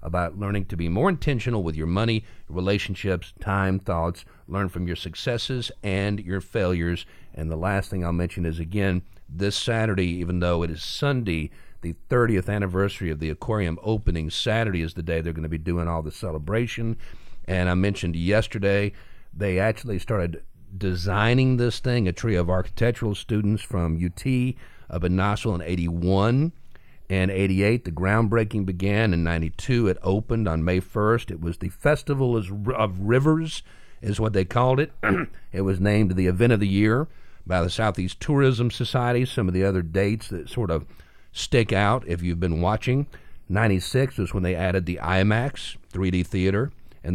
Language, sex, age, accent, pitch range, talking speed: English, male, 50-69, American, 90-110 Hz, 170 wpm